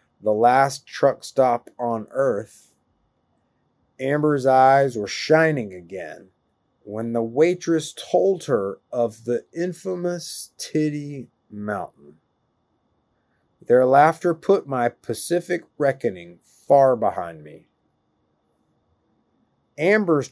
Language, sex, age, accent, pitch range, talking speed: English, male, 30-49, American, 115-155 Hz, 90 wpm